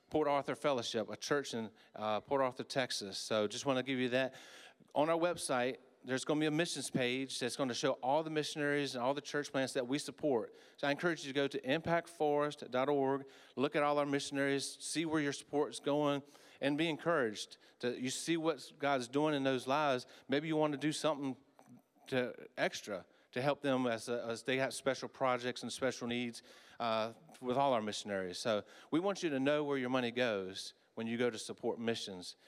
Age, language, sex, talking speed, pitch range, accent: 40-59, English, male, 210 wpm, 120-145 Hz, American